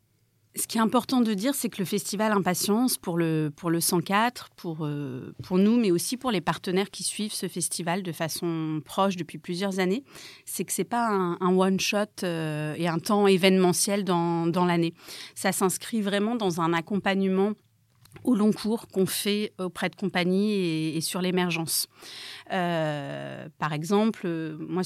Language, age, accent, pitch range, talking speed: French, 30-49, French, 165-200 Hz, 175 wpm